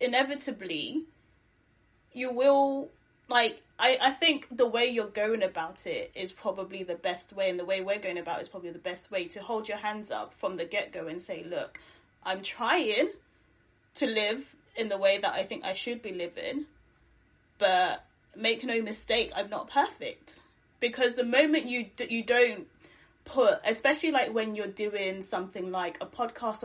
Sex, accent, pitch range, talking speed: female, British, 190-255 Hz, 180 wpm